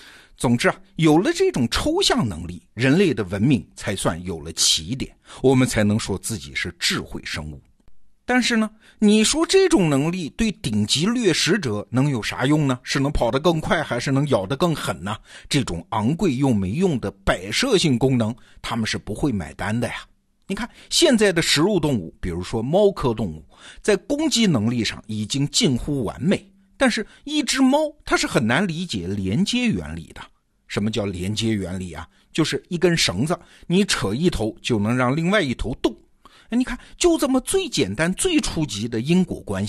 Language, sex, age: Chinese, male, 50-69